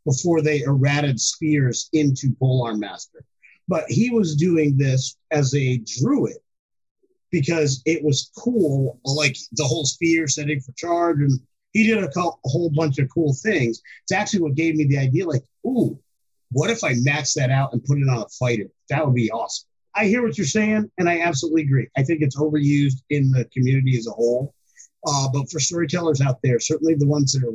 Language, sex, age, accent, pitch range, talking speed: English, male, 30-49, American, 130-160 Hz, 205 wpm